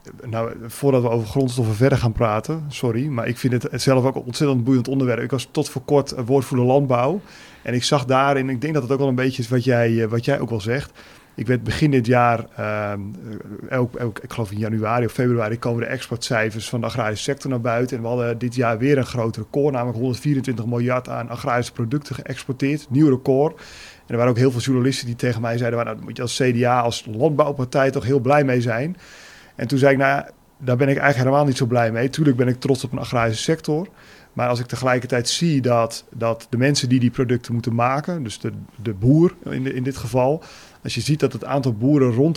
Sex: male